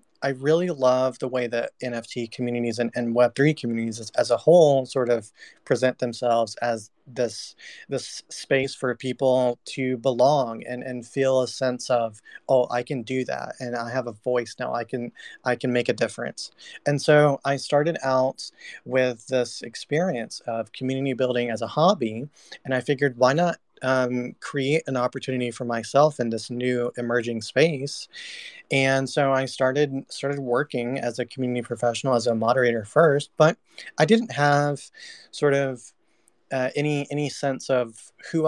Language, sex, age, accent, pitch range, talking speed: English, male, 30-49, American, 120-140 Hz, 170 wpm